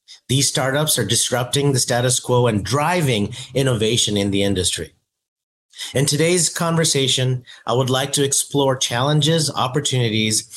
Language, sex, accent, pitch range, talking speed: English, male, American, 115-145 Hz, 130 wpm